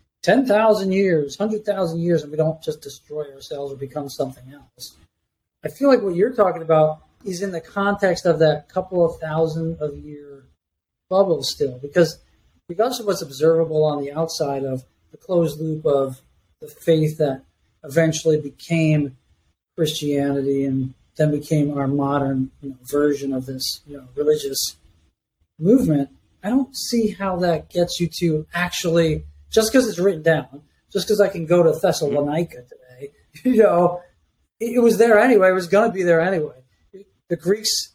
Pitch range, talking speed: 145-185 Hz, 165 wpm